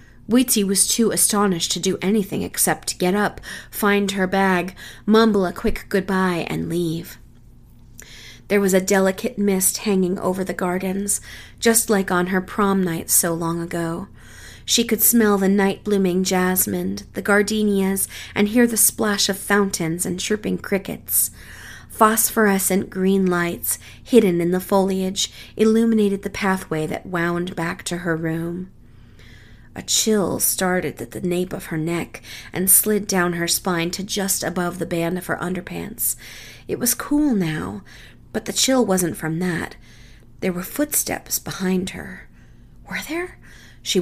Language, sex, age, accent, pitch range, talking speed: English, female, 30-49, American, 170-205 Hz, 150 wpm